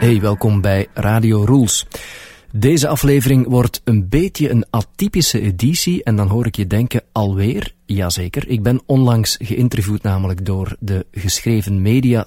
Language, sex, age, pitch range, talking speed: Dutch, male, 40-59, 95-120 Hz, 145 wpm